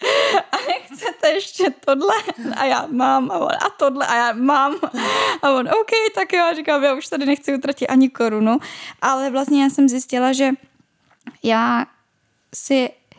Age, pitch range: 10-29, 200-255 Hz